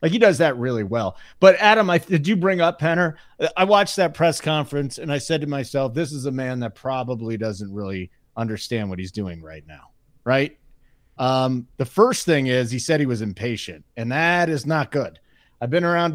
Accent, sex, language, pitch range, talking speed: American, male, English, 125-160 Hz, 210 wpm